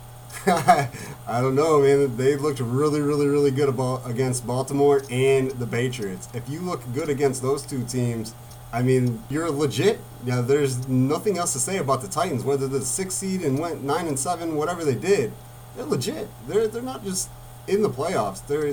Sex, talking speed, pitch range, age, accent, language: male, 195 wpm, 120-140 Hz, 30-49, American, English